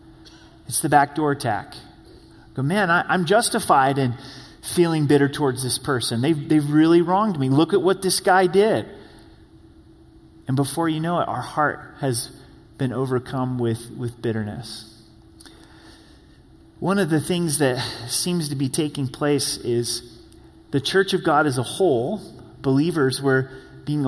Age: 30-49